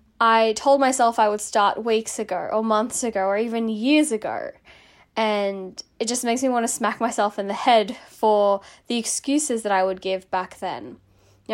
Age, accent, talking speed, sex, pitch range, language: 10-29, Australian, 190 wpm, female, 195-235 Hz, English